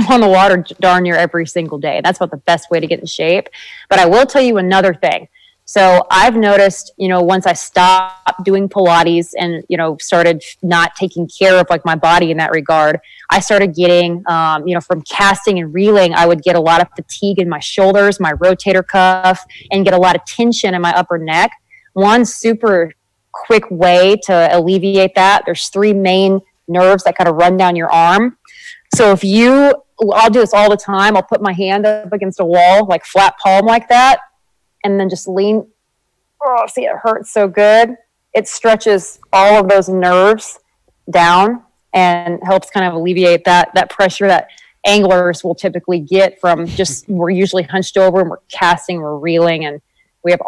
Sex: female